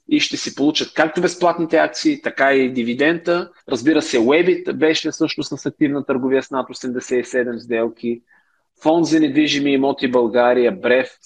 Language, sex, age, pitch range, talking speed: Bulgarian, male, 30-49, 125-160 Hz, 150 wpm